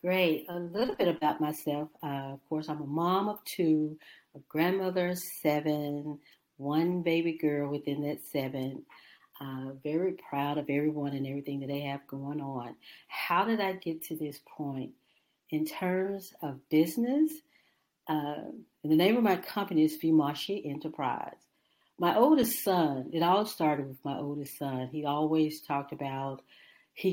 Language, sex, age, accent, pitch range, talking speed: English, female, 50-69, American, 140-170 Hz, 160 wpm